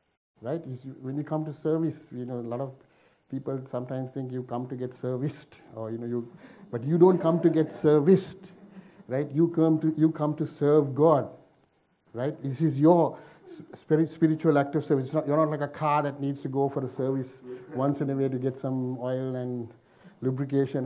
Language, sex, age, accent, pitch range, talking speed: English, male, 50-69, Indian, 130-170 Hz, 205 wpm